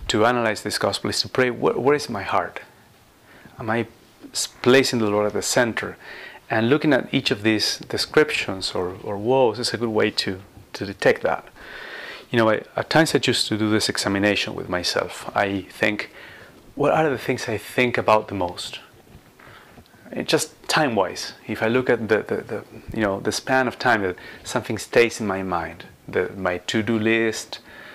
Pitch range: 100-125 Hz